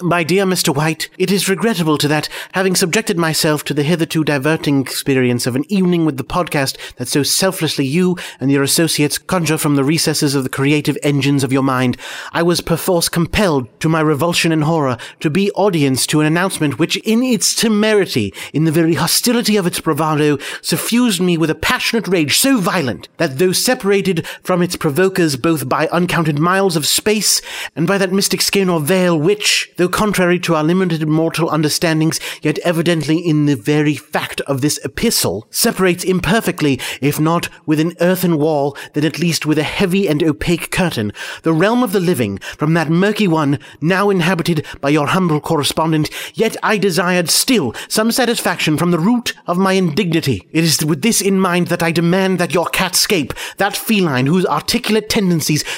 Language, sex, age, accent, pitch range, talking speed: English, male, 30-49, British, 155-190 Hz, 185 wpm